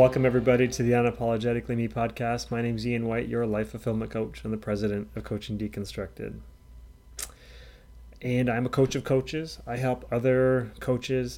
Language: English